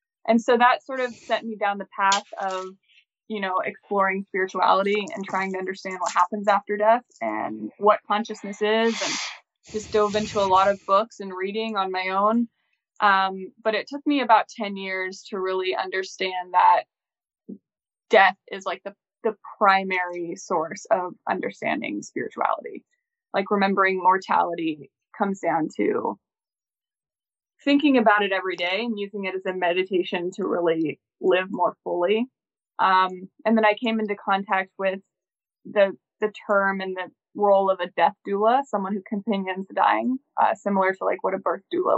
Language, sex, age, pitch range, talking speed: English, female, 20-39, 190-225 Hz, 165 wpm